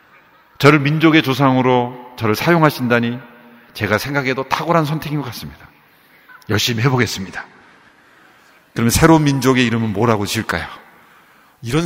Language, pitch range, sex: Korean, 125-200 Hz, male